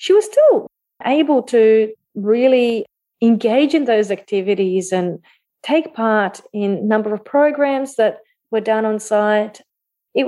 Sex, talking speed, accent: female, 140 wpm, Australian